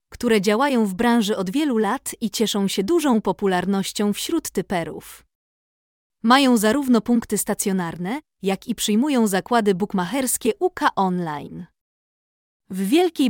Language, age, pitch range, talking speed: Polish, 20-39, 195-255 Hz, 120 wpm